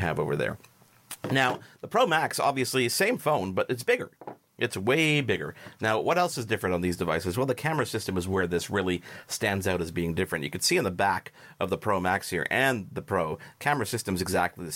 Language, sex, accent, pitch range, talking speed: English, male, American, 90-125 Hz, 230 wpm